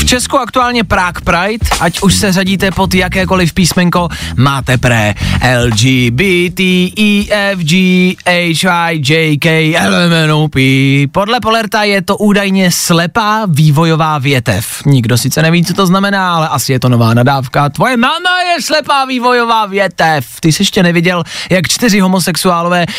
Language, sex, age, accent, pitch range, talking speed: Czech, male, 20-39, native, 135-195 Hz, 130 wpm